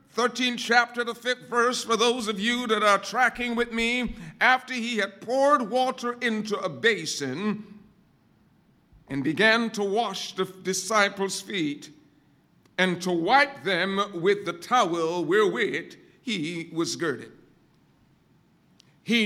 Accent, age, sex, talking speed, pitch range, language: American, 50-69, male, 130 wpm, 195-255 Hz, English